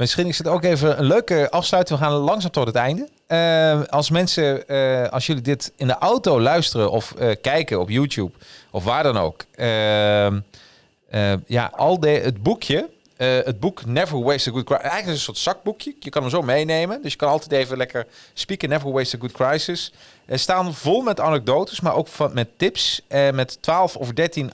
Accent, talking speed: Dutch, 210 wpm